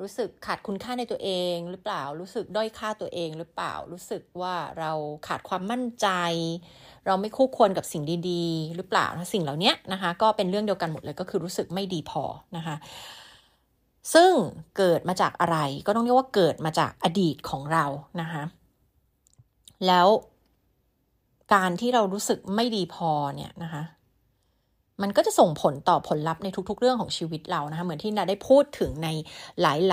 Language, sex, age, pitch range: Thai, female, 30-49, 165-215 Hz